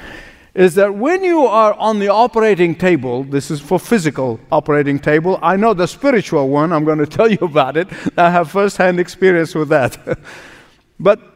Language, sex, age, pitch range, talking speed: English, male, 50-69, 170-245 Hz, 180 wpm